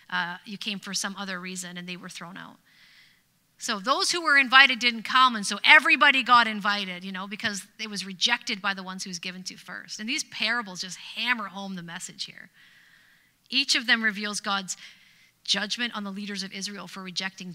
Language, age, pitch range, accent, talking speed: English, 30-49, 190-245 Hz, American, 205 wpm